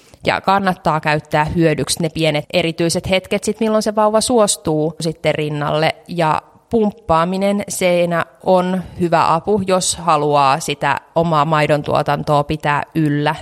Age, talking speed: 20-39, 130 wpm